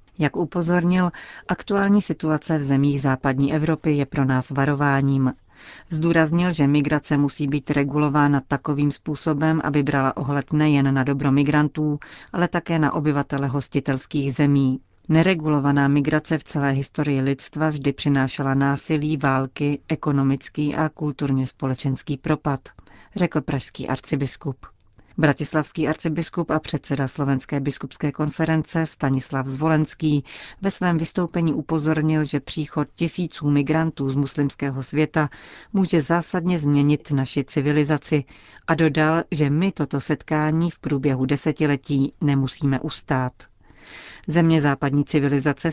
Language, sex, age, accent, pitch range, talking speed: Czech, female, 40-59, native, 135-155 Hz, 120 wpm